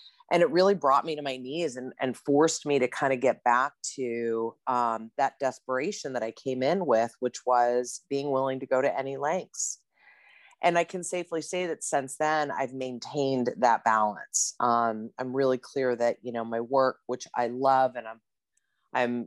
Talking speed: 195 wpm